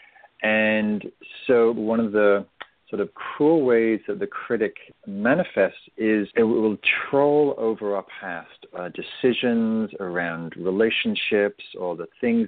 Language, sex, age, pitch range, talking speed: English, male, 40-59, 100-125 Hz, 125 wpm